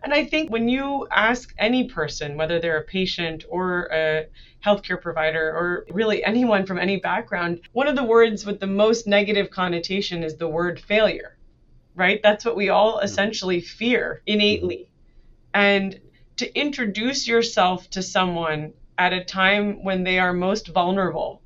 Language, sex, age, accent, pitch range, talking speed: English, female, 30-49, American, 165-205 Hz, 160 wpm